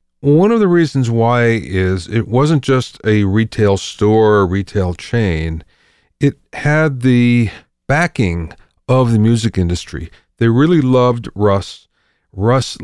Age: 40-59